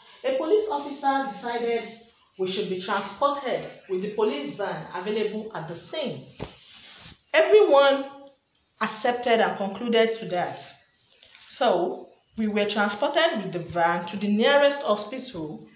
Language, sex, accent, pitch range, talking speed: English, female, Nigerian, 185-260 Hz, 125 wpm